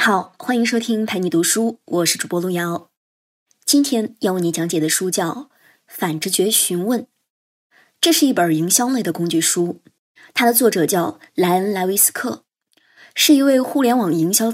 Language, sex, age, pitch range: Chinese, male, 20-39, 180-245 Hz